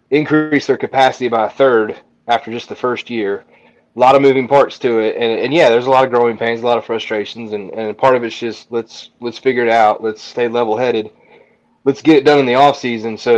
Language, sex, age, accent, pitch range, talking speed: English, male, 30-49, American, 115-135 Hz, 240 wpm